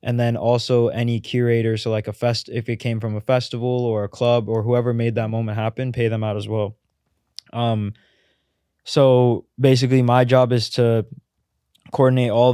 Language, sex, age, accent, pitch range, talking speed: English, male, 20-39, American, 100-115 Hz, 180 wpm